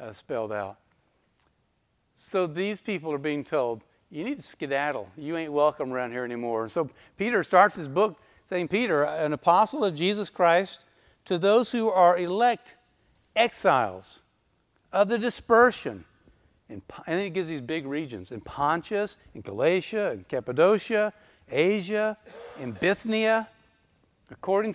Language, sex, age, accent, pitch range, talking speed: English, male, 60-79, American, 145-195 Hz, 135 wpm